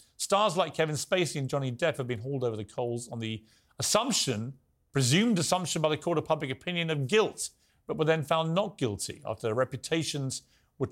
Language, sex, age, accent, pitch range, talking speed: English, male, 40-59, British, 125-170 Hz, 200 wpm